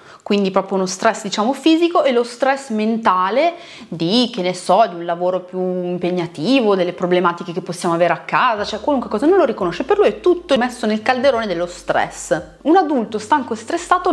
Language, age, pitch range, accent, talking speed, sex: Italian, 30-49, 180-280 Hz, native, 195 wpm, female